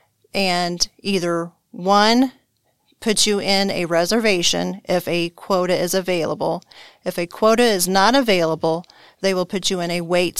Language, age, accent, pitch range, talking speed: English, 40-59, American, 175-205 Hz, 150 wpm